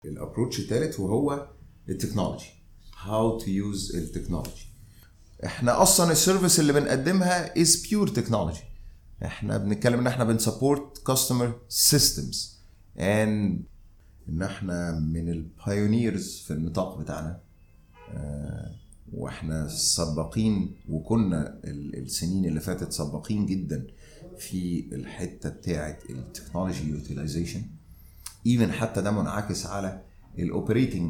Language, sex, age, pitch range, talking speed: English, male, 30-49, 80-105 Hz, 95 wpm